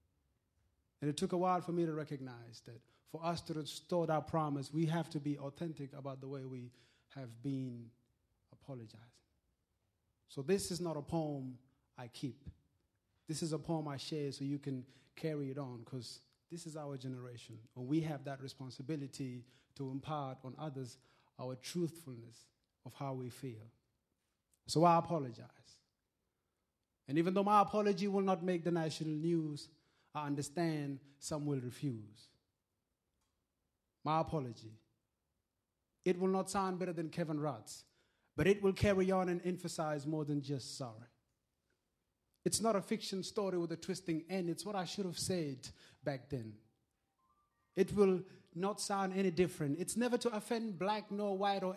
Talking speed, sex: 160 wpm, male